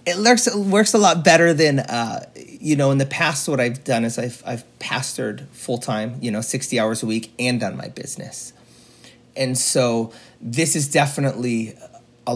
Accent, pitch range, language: American, 115-140 Hz, English